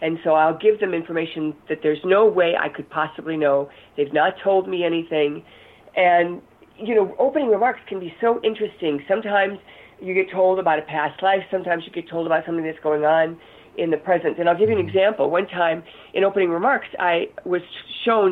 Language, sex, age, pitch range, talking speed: English, female, 50-69, 165-215 Hz, 205 wpm